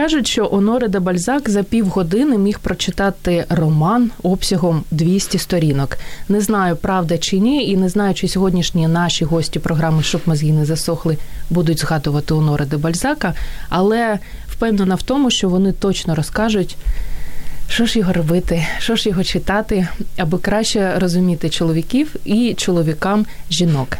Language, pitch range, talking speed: Ukrainian, 165-205 Hz, 145 wpm